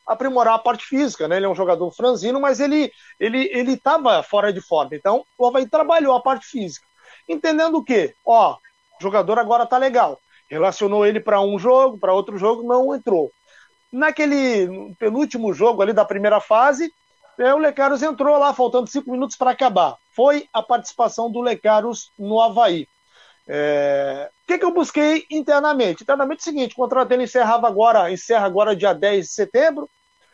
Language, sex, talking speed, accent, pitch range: Portuguese, male, 175 wpm, Brazilian, 210-285 Hz